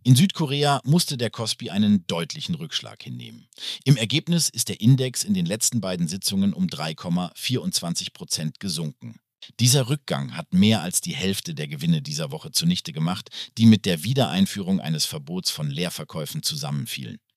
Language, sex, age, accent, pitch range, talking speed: German, male, 50-69, German, 110-170 Hz, 155 wpm